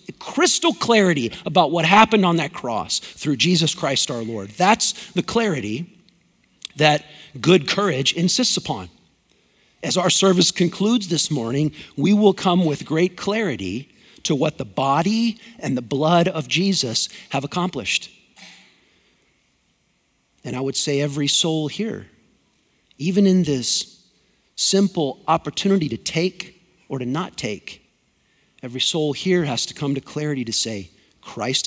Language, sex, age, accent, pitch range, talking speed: English, male, 50-69, American, 135-205 Hz, 140 wpm